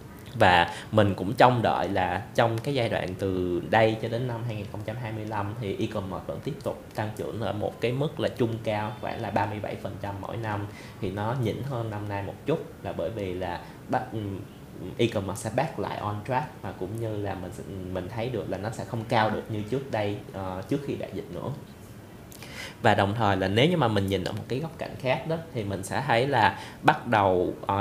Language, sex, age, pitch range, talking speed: Vietnamese, male, 20-39, 100-115 Hz, 215 wpm